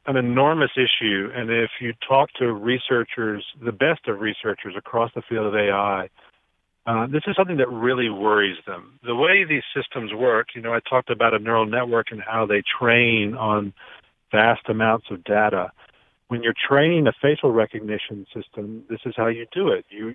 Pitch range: 110-135 Hz